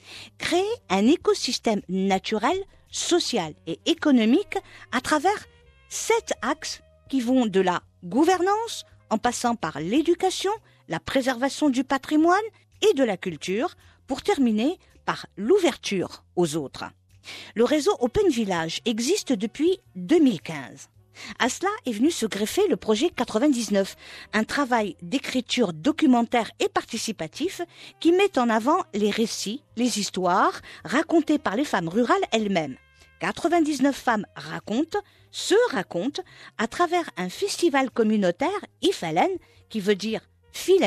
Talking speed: 125 wpm